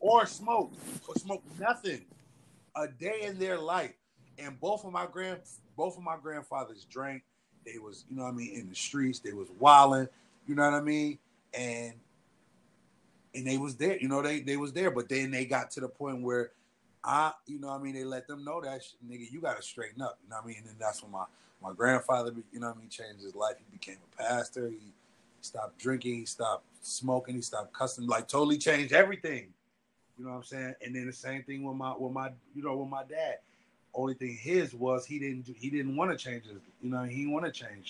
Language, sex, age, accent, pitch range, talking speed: English, male, 30-49, American, 120-140 Hz, 235 wpm